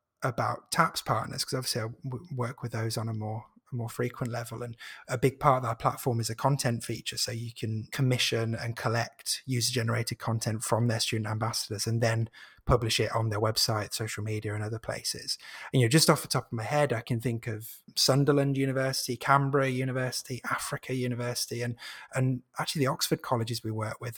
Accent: British